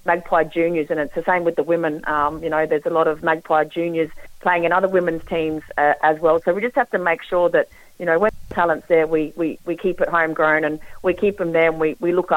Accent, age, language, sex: Australian, 40-59, English, female